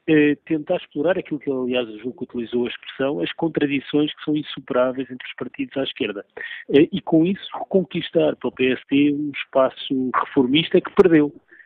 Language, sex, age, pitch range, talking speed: Portuguese, male, 50-69, 120-155 Hz, 165 wpm